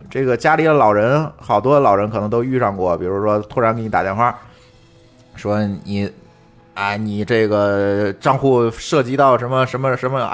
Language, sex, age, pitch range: Chinese, male, 20-39, 105-140 Hz